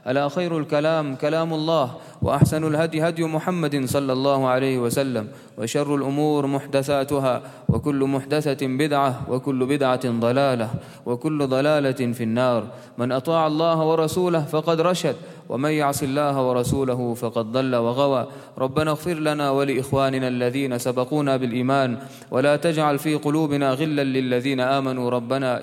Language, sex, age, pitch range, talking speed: English, male, 20-39, 130-150 Hz, 125 wpm